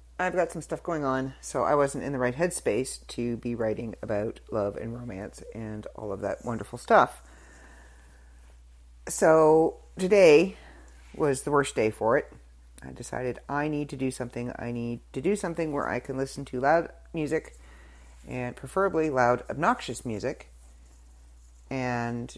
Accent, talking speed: American, 160 wpm